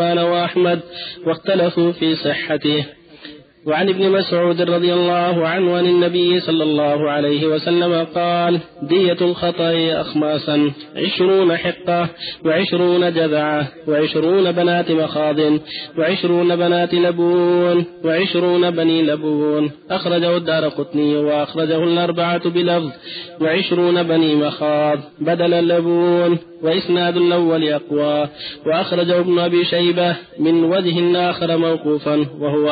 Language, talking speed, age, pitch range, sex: Arabic, 100 wpm, 30-49, 150-175 Hz, male